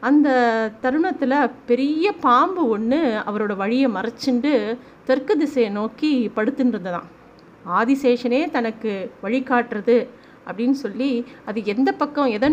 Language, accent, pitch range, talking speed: Tamil, native, 215-265 Hz, 110 wpm